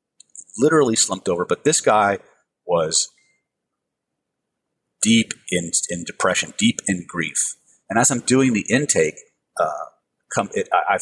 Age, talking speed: 40-59, 130 wpm